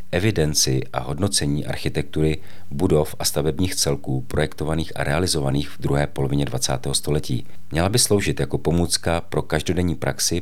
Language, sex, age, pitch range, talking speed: Czech, male, 40-59, 75-90 Hz, 140 wpm